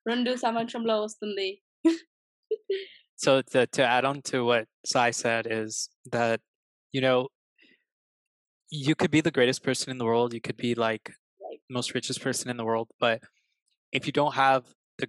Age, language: 20-39, Telugu